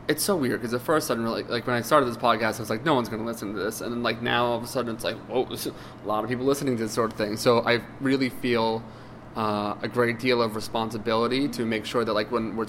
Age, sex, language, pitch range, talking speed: 20-39, male, English, 110-130 Hz, 305 wpm